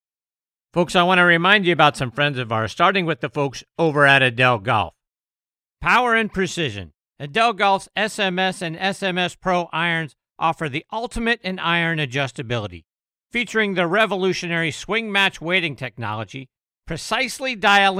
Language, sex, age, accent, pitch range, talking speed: English, male, 50-69, American, 140-210 Hz, 145 wpm